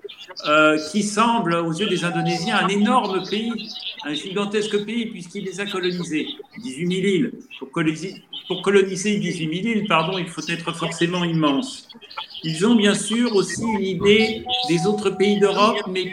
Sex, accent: male, French